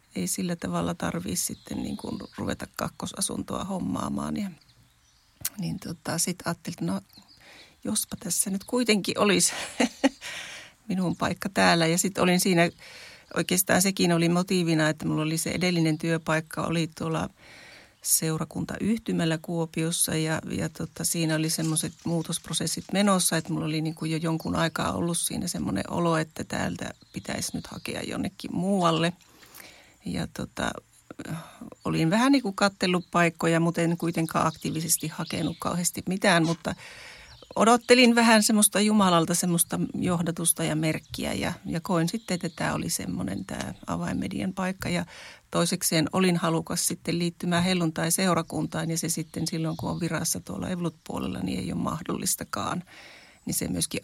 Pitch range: 160-185 Hz